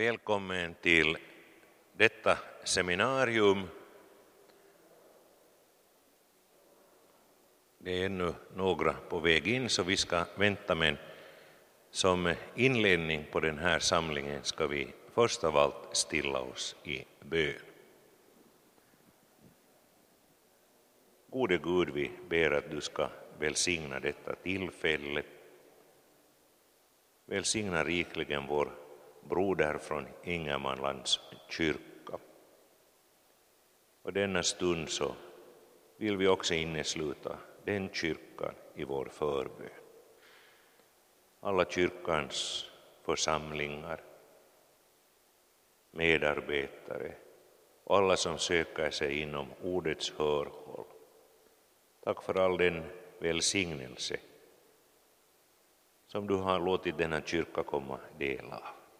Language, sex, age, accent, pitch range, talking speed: Swedish, male, 60-79, Finnish, 75-110 Hz, 90 wpm